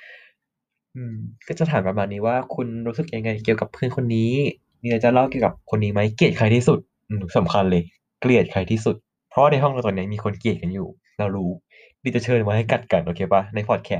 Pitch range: 105-135 Hz